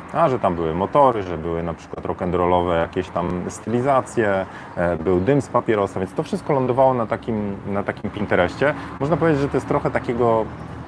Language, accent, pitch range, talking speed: Polish, native, 95-125 Hz, 180 wpm